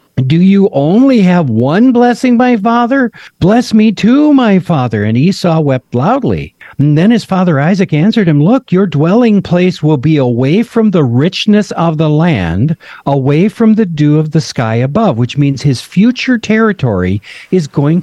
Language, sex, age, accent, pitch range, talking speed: English, male, 50-69, American, 125-185 Hz, 175 wpm